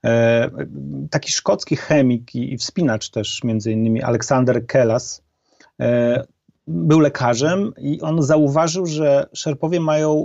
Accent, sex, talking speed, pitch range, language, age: native, male, 105 wpm, 125-150 Hz, Polish, 30-49